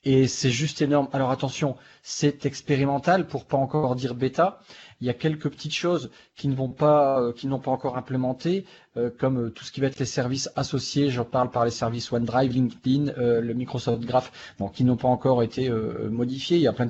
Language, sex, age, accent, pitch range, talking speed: French, male, 40-59, French, 125-155 Hz, 205 wpm